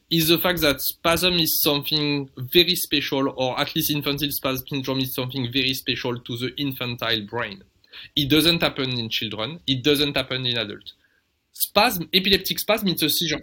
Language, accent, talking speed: English, French, 175 wpm